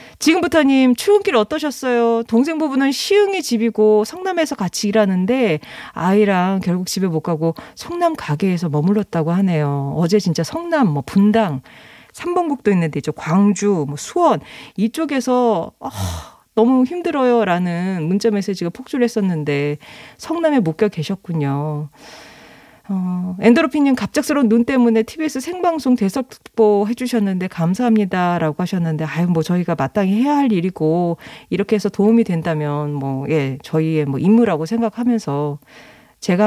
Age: 40-59